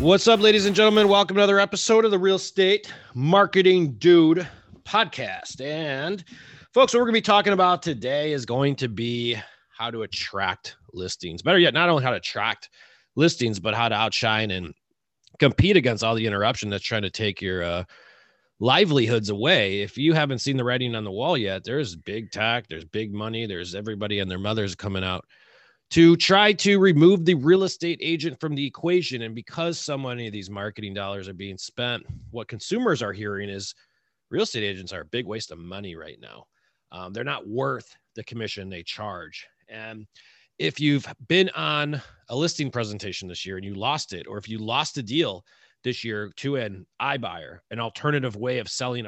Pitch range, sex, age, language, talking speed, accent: 105-155 Hz, male, 30-49, English, 195 wpm, American